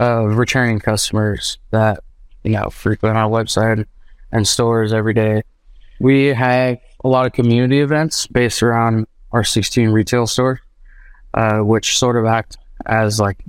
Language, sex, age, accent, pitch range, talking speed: English, male, 20-39, American, 110-120 Hz, 145 wpm